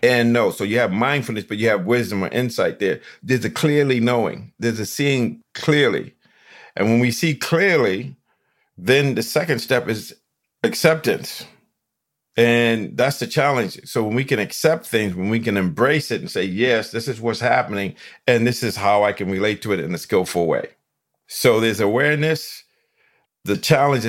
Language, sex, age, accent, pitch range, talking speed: English, male, 50-69, American, 105-130 Hz, 180 wpm